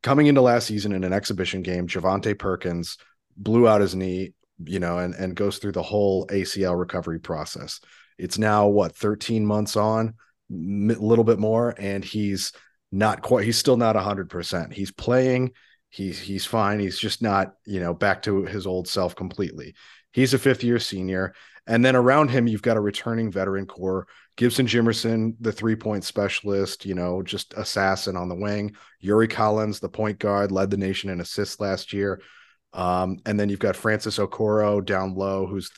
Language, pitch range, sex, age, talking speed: English, 95-110 Hz, male, 30-49, 180 wpm